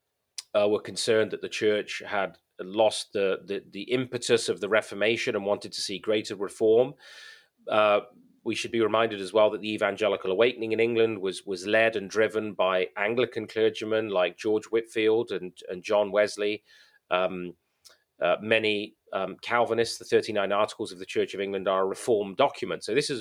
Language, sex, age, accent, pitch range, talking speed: English, male, 30-49, British, 95-120 Hz, 180 wpm